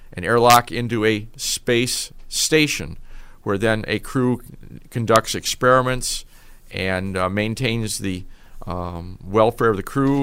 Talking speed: 125 wpm